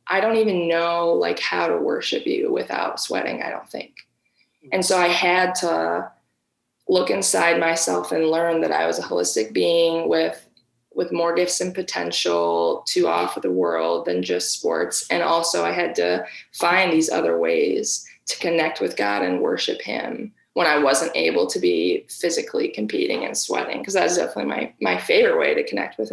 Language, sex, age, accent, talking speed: English, female, 20-39, American, 185 wpm